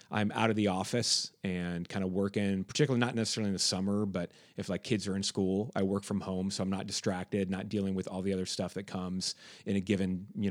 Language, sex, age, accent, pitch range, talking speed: English, male, 30-49, American, 95-110 Hz, 245 wpm